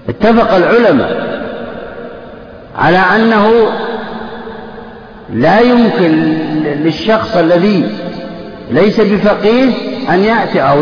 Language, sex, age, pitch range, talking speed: Arabic, male, 50-69, 190-235 Hz, 70 wpm